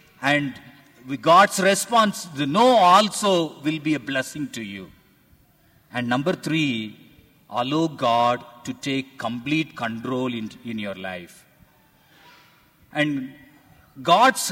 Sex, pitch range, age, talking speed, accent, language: male, 145-190 Hz, 50-69, 115 wpm, Indian, English